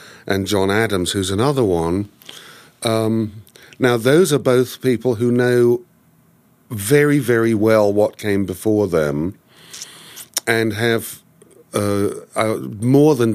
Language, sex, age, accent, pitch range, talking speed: English, male, 50-69, British, 100-130 Hz, 120 wpm